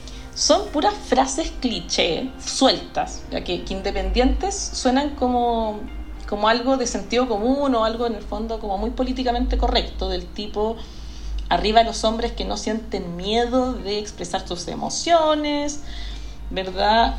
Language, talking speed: Spanish, 135 wpm